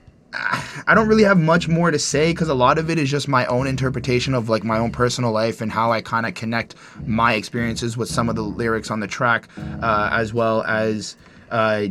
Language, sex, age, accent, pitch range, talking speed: English, male, 20-39, American, 110-130 Hz, 225 wpm